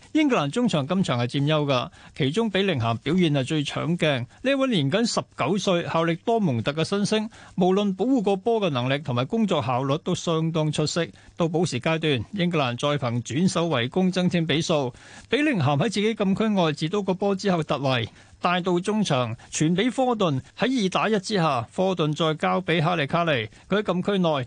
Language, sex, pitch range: Chinese, male, 145-195 Hz